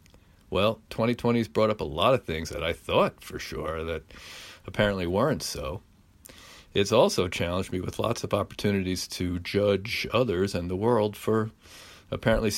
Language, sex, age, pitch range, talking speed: English, male, 50-69, 90-115 Hz, 155 wpm